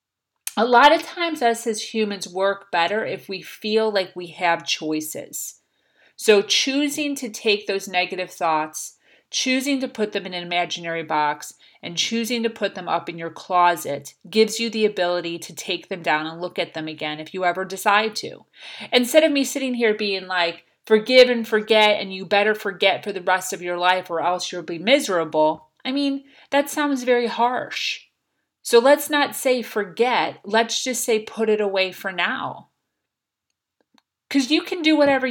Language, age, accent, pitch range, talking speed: English, 40-59, American, 180-240 Hz, 180 wpm